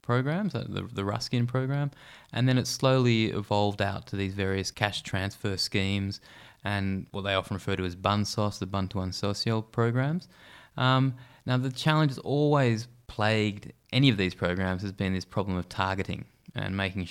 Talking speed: 170 wpm